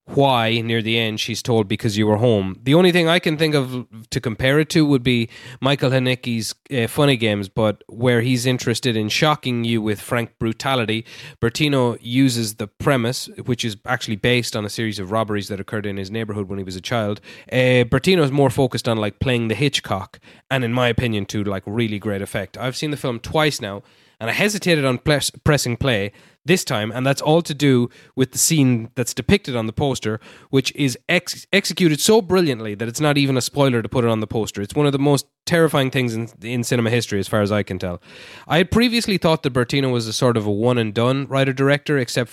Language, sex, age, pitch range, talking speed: English, male, 20-39, 110-140 Hz, 220 wpm